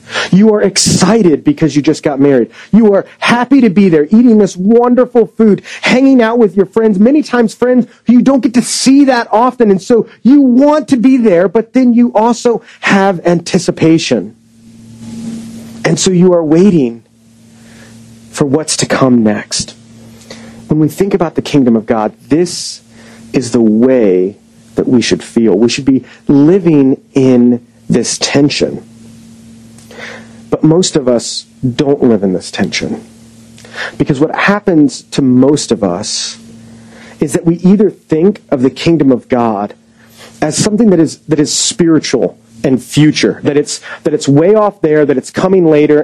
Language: English